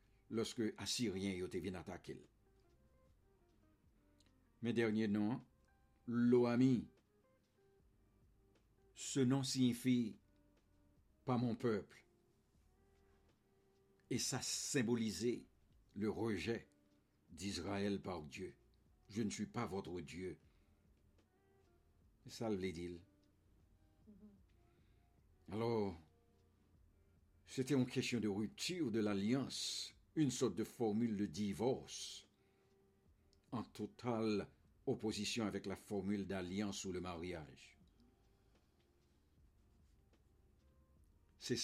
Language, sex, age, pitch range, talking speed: English, male, 60-79, 80-105 Hz, 80 wpm